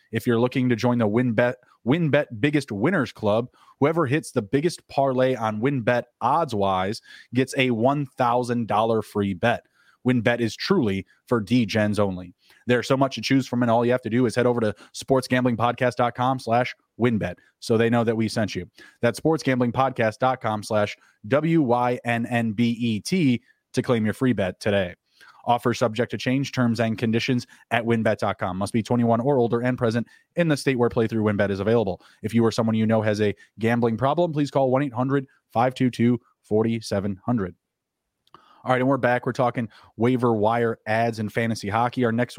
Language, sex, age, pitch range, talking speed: English, male, 20-39, 115-135 Hz, 170 wpm